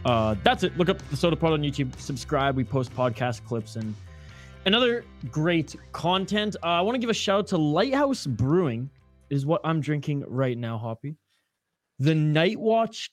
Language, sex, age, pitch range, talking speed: English, male, 20-39, 125-170 Hz, 180 wpm